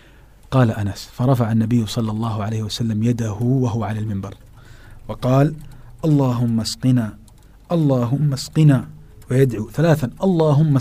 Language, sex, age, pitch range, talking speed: Indonesian, male, 40-59, 110-140 Hz, 110 wpm